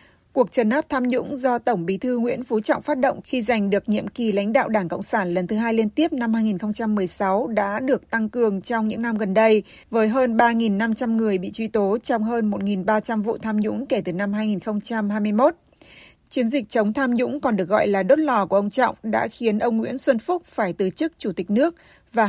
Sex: female